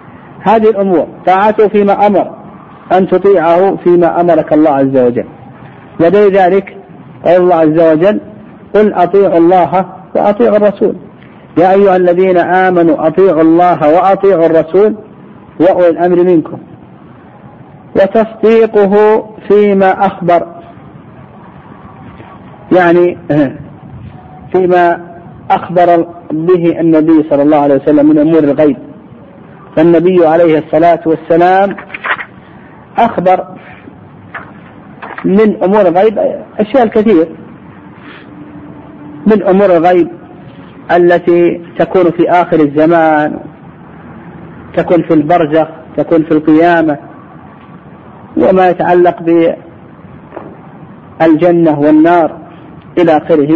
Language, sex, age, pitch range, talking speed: Arabic, male, 50-69, 160-195 Hz, 85 wpm